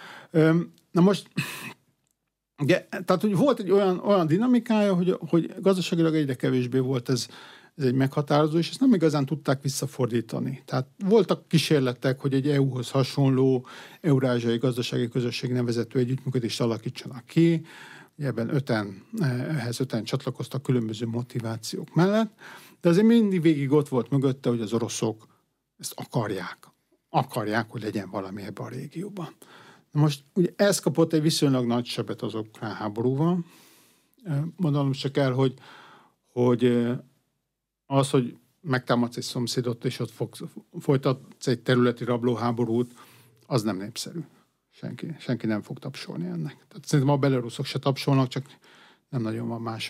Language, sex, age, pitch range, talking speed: Hungarian, male, 50-69, 125-160 Hz, 135 wpm